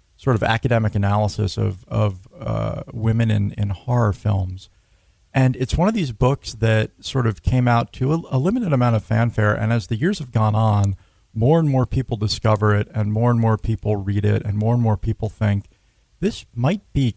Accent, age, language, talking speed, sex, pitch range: American, 40-59, English, 205 wpm, male, 105-120 Hz